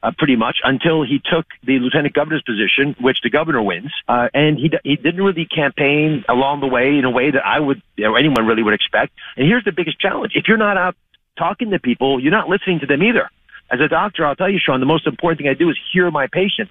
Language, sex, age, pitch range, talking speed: English, male, 50-69, 135-185 Hz, 260 wpm